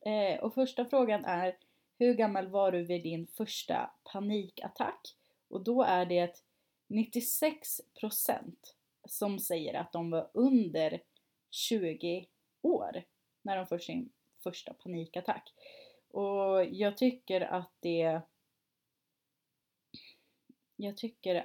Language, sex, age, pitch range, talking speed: Swedish, female, 30-49, 180-230 Hz, 100 wpm